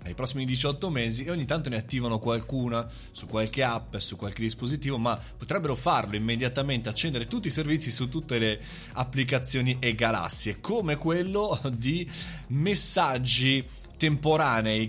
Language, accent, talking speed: Italian, native, 140 wpm